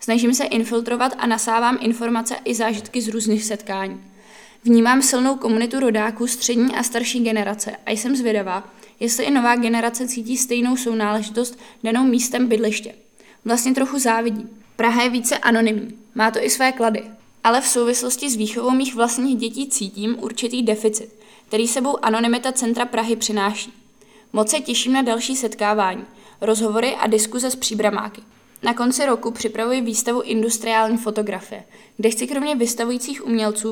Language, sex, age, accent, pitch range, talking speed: Czech, female, 20-39, native, 220-245 Hz, 150 wpm